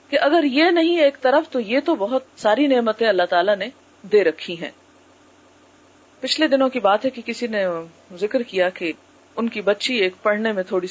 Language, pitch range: Urdu, 210-300 Hz